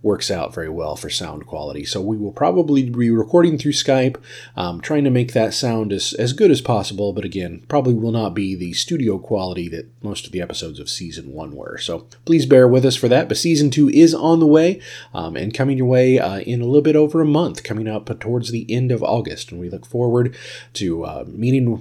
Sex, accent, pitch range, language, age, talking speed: male, American, 105-130 Hz, English, 30-49, 235 wpm